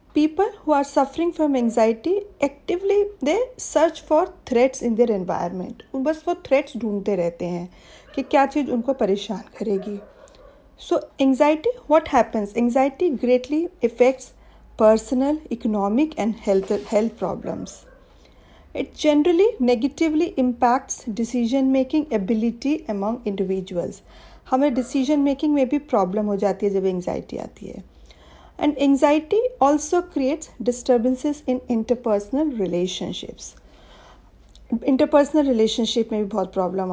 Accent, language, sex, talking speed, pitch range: Indian, English, female, 100 wpm, 220-300 Hz